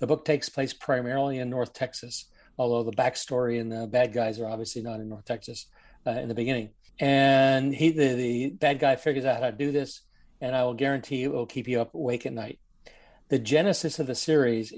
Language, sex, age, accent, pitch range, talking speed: English, male, 50-69, American, 120-140 Hz, 225 wpm